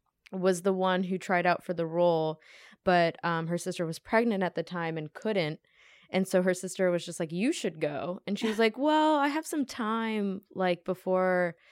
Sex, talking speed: female, 210 wpm